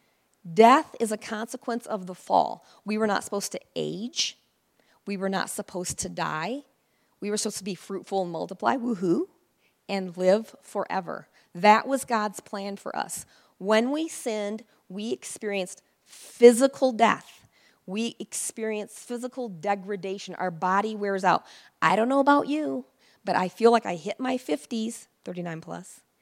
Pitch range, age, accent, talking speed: 195-260 Hz, 40-59, American, 155 wpm